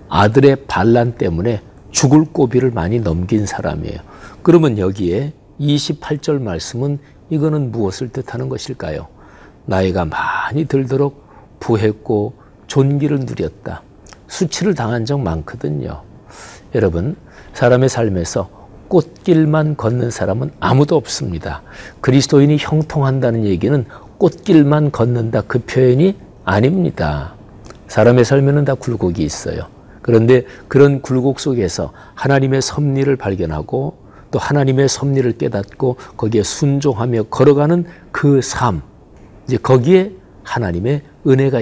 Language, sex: Korean, male